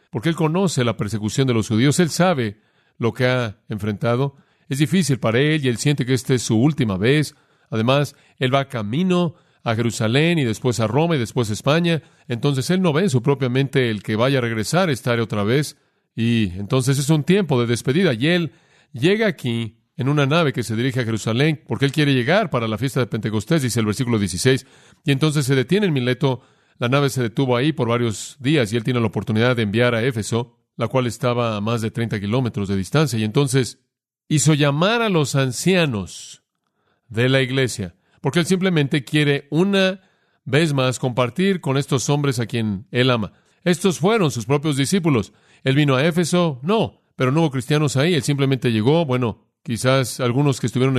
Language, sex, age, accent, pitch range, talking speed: Spanish, male, 40-59, Mexican, 120-150 Hz, 200 wpm